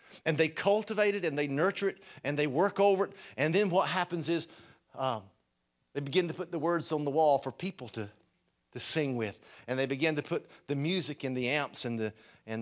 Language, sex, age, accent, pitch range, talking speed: English, male, 50-69, American, 150-205 Hz, 225 wpm